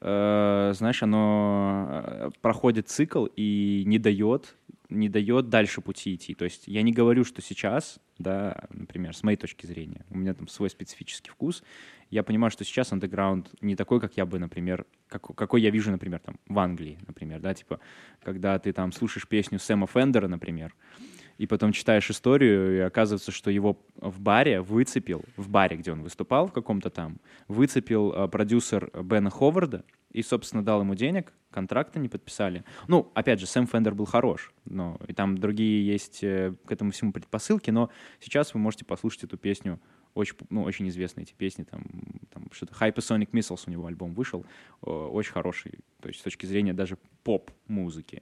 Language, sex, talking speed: Russian, male, 175 wpm